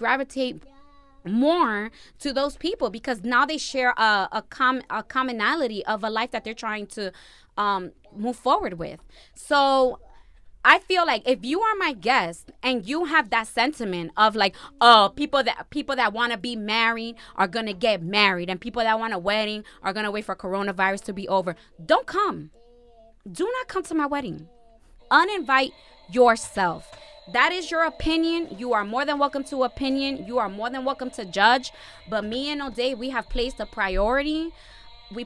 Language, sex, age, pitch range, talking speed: English, female, 20-39, 210-275 Hz, 175 wpm